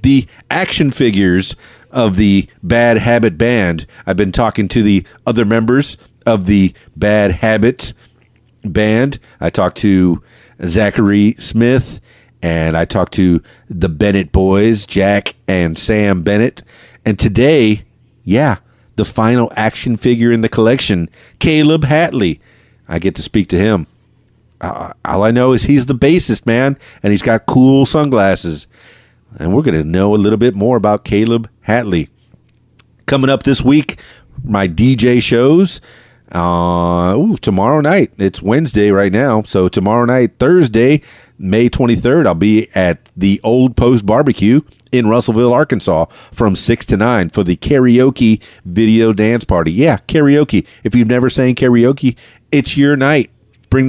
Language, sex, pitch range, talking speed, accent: English, male, 100-125 Hz, 145 wpm, American